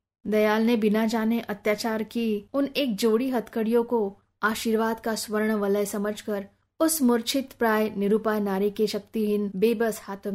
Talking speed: 145 wpm